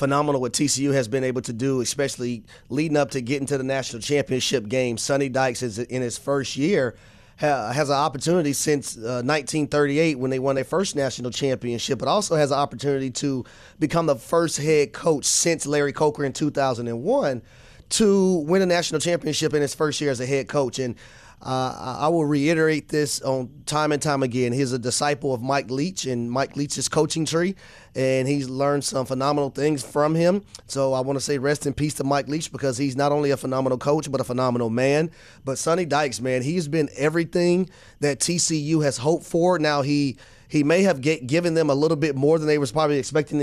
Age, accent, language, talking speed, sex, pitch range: 30-49, American, English, 205 wpm, male, 130-155 Hz